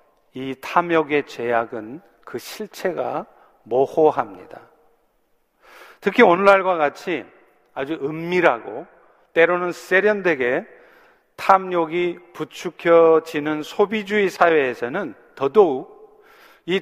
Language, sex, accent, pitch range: Korean, male, native, 160-205 Hz